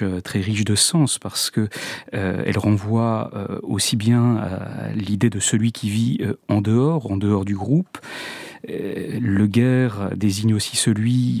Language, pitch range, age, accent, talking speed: French, 100-125 Hz, 40-59, French, 155 wpm